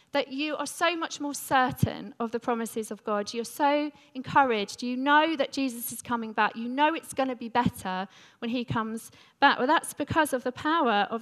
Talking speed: 215 wpm